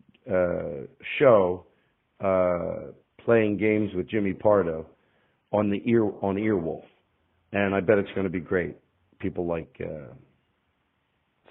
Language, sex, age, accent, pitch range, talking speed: English, male, 50-69, American, 90-130 Hz, 120 wpm